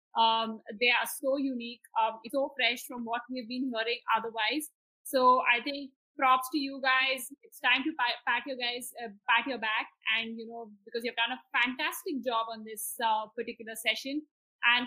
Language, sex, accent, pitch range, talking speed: English, female, Indian, 230-270 Hz, 190 wpm